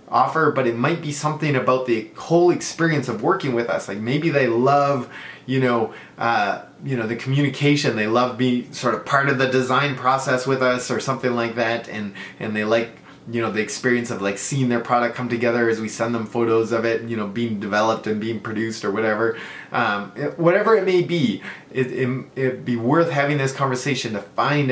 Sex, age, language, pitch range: male, 20-39, English, 110-130 Hz